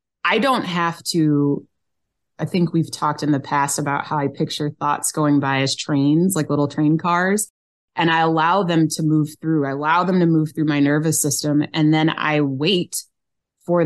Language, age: English, 30-49